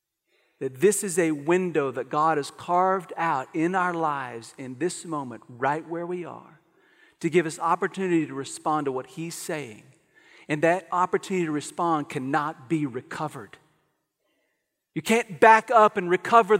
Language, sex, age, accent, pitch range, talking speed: English, male, 40-59, American, 180-240 Hz, 160 wpm